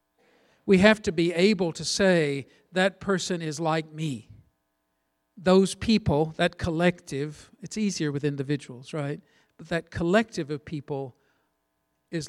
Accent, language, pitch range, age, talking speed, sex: American, English, 130-165 Hz, 50-69, 130 wpm, male